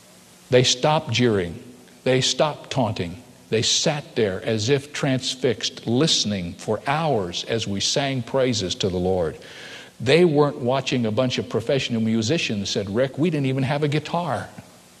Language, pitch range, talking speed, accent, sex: English, 95-140 Hz, 150 wpm, American, male